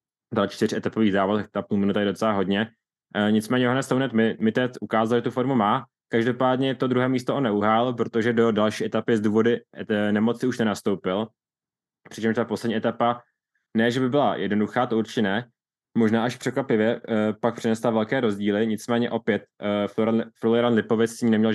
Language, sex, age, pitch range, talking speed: Czech, male, 20-39, 105-115 Hz, 180 wpm